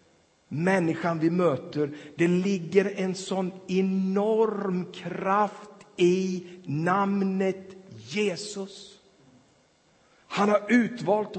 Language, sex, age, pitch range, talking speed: Swedish, male, 50-69, 135-185 Hz, 80 wpm